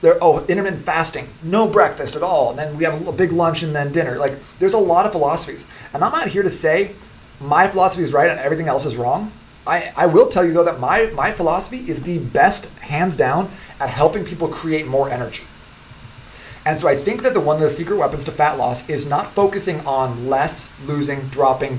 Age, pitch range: 30-49, 135-175 Hz